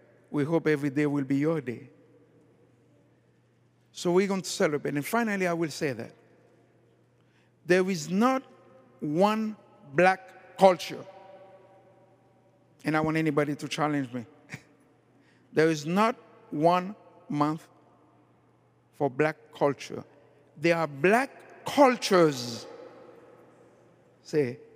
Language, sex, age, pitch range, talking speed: English, male, 60-79, 155-210 Hz, 110 wpm